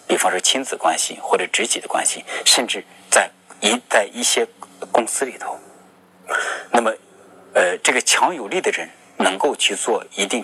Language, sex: Chinese, male